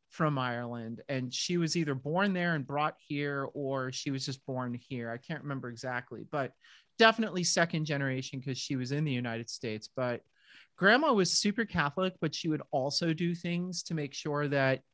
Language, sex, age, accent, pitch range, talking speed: English, male, 30-49, American, 135-175 Hz, 190 wpm